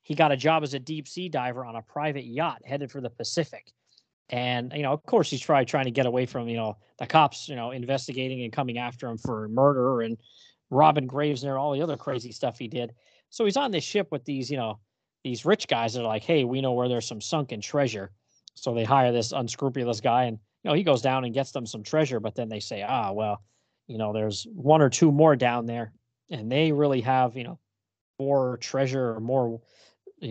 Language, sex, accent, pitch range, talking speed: English, male, American, 115-145 Hz, 235 wpm